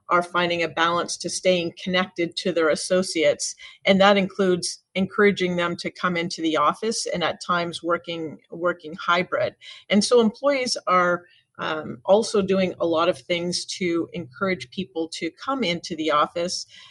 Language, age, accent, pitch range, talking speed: English, 50-69, American, 170-195 Hz, 160 wpm